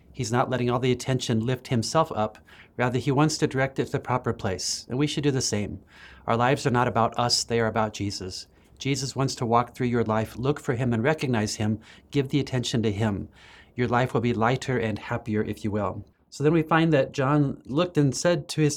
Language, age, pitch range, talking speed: English, 40-59, 110-140 Hz, 235 wpm